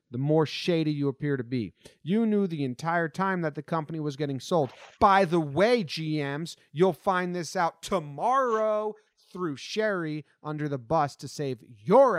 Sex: male